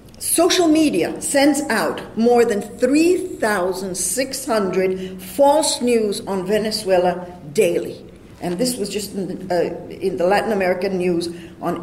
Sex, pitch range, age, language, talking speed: female, 190-255 Hz, 60-79, English, 115 wpm